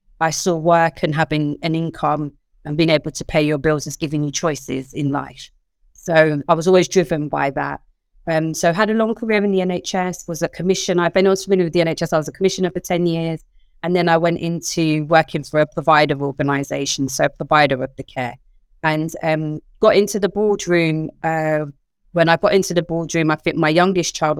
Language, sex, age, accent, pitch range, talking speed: English, female, 30-49, British, 155-180 Hz, 215 wpm